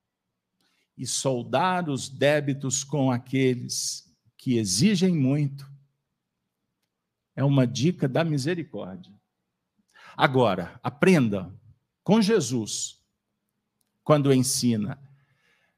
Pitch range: 115-150 Hz